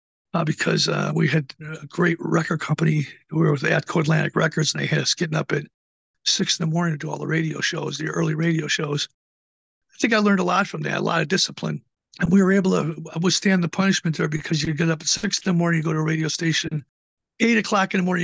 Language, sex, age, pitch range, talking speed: English, male, 50-69, 155-175 Hz, 255 wpm